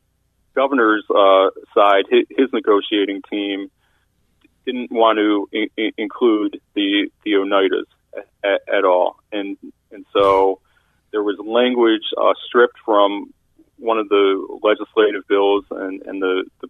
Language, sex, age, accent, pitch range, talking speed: English, male, 40-59, American, 100-130 Hz, 125 wpm